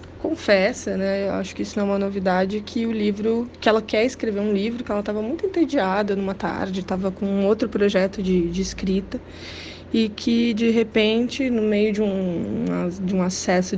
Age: 20-39